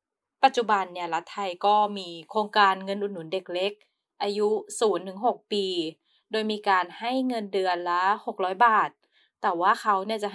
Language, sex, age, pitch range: Thai, female, 20-39, 180-225 Hz